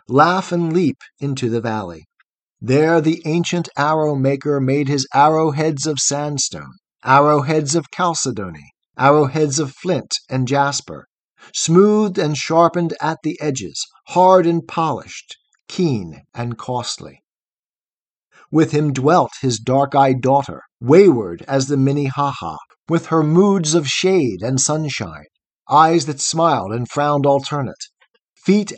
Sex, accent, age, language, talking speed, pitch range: male, American, 50-69, English, 125 wpm, 135-170 Hz